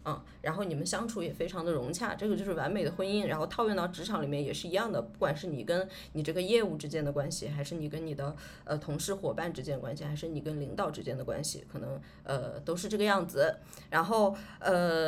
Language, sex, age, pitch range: Chinese, female, 20-39, 155-195 Hz